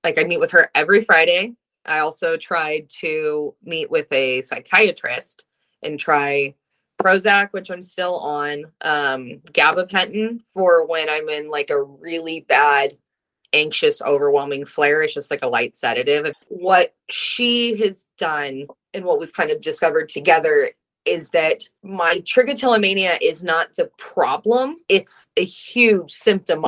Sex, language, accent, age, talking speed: female, English, American, 20-39, 145 wpm